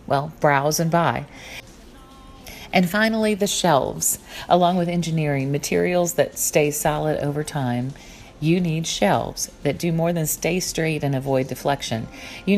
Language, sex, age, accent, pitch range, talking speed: English, female, 40-59, American, 145-175 Hz, 145 wpm